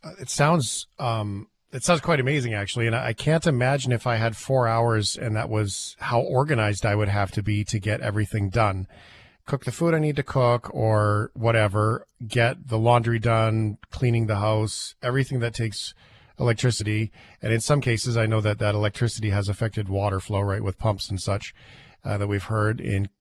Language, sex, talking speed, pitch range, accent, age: English, male, 190 wpm, 105-140 Hz, American, 40-59